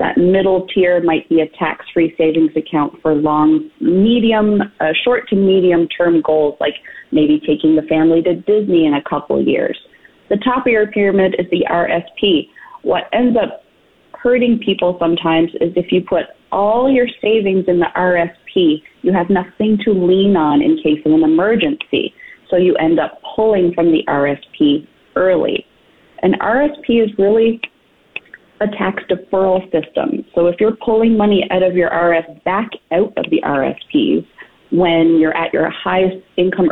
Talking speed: 165 wpm